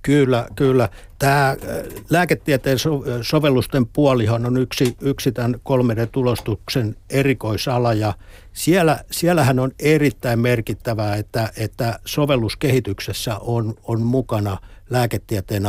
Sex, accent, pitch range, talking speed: male, native, 105-130 Hz, 95 wpm